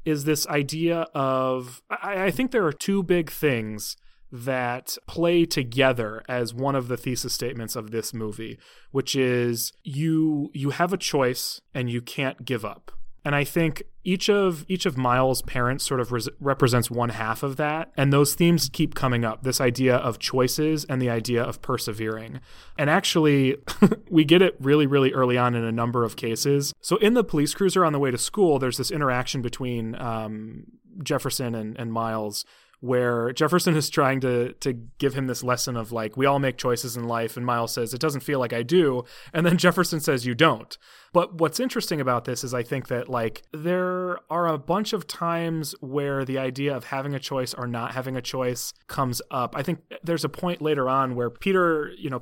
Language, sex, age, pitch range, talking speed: English, male, 30-49, 120-155 Hz, 200 wpm